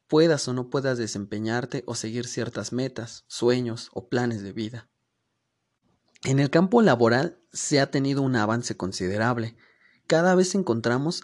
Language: Spanish